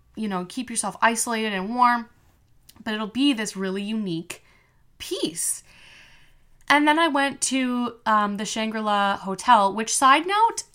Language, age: English, 20-39